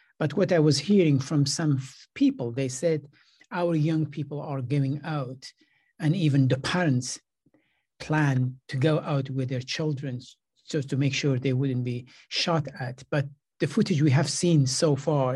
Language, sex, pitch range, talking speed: English, male, 135-155 Hz, 170 wpm